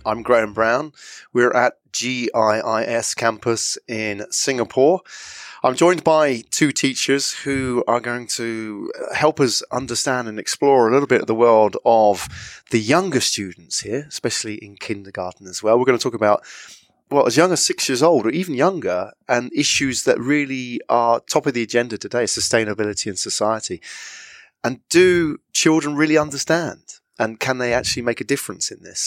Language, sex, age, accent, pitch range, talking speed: English, male, 30-49, British, 105-135 Hz, 165 wpm